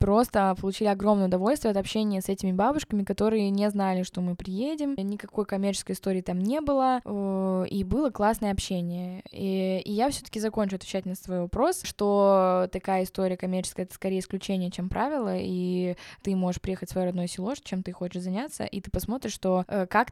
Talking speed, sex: 180 wpm, female